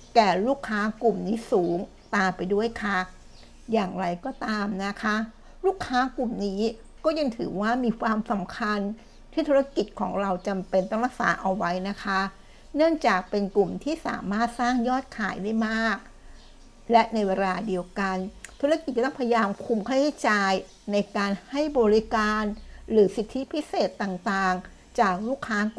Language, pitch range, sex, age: Thai, 195-245 Hz, female, 60-79